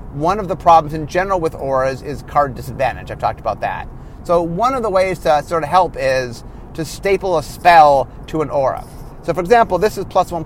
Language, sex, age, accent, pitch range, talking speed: English, male, 30-49, American, 145-195 Hz, 225 wpm